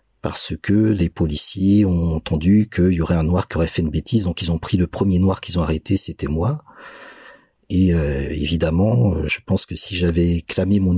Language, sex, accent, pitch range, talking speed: French, male, French, 85-100 Hz, 210 wpm